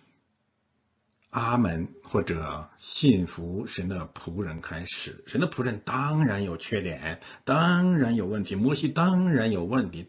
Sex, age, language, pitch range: male, 50-69, Chinese, 90-120 Hz